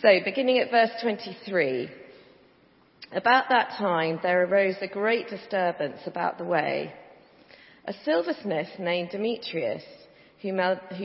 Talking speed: 115 wpm